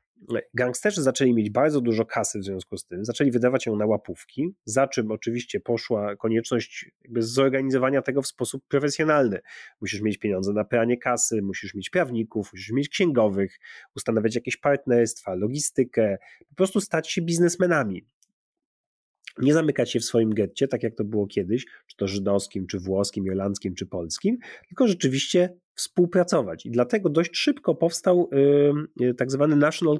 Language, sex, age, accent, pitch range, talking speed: Polish, male, 30-49, native, 105-150 Hz, 155 wpm